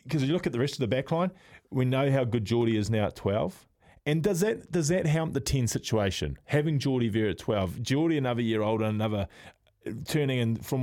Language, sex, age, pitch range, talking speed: English, male, 20-39, 110-135 Hz, 235 wpm